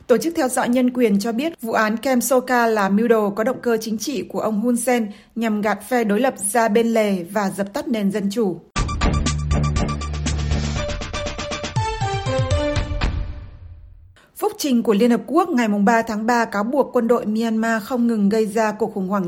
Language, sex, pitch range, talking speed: Vietnamese, female, 205-245 Hz, 185 wpm